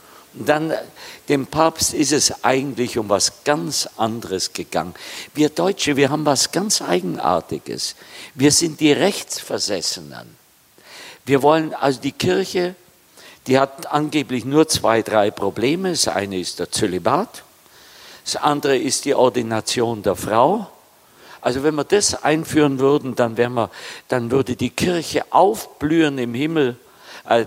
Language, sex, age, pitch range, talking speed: German, male, 50-69, 115-155 Hz, 140 wpm